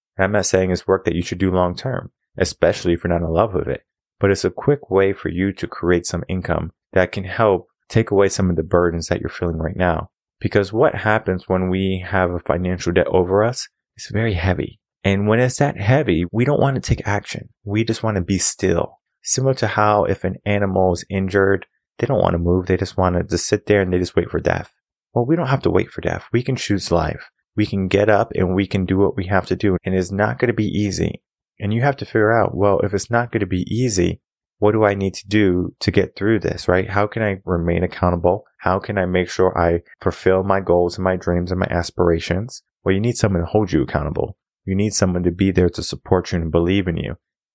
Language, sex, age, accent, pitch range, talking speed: English, male, 20-39, American, 90-105 Hz, 250 wpm